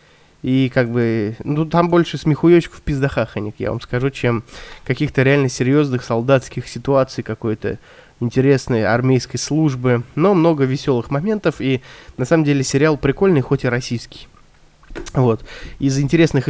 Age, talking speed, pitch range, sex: 20-39, 140 wpm, 125-150 Hz, male